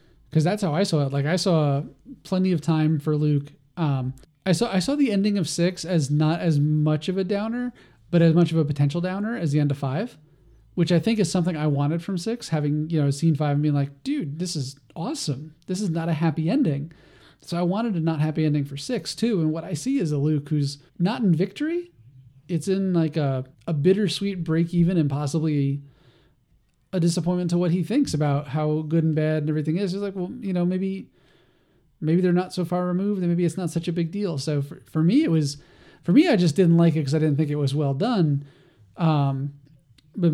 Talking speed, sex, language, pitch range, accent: 235 wpm, male, English, 150-180 Hz, American